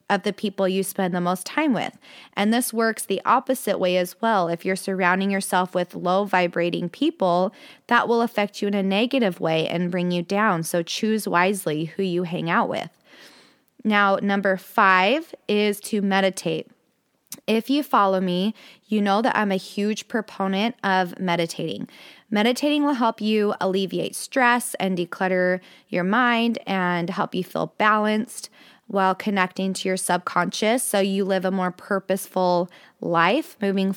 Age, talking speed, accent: 20-39, 165 wpm, American